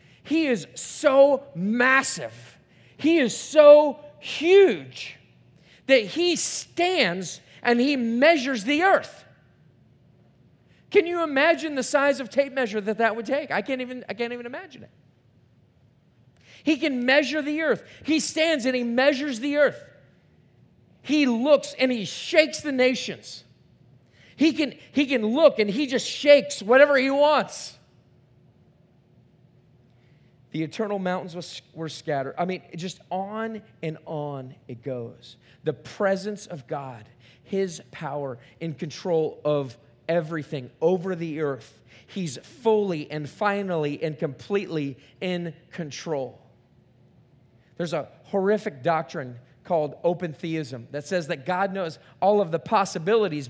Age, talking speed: 40-59, 130 wpm